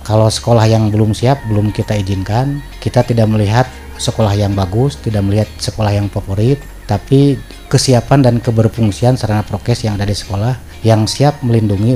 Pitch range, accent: 100-120 Hz, native